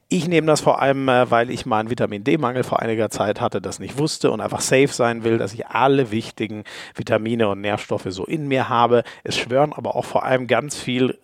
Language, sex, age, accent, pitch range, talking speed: German, male, 50-69, German, 110-145 Hz, 215 wpm